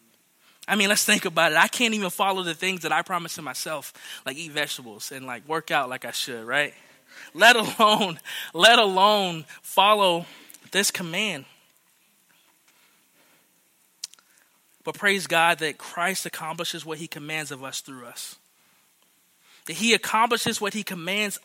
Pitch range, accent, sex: 160-210 Hz, American, male